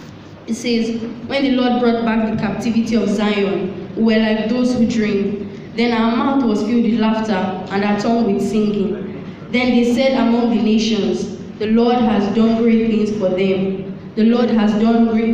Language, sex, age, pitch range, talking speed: English, female, 20-39, 200-235 Hz, 190 wpm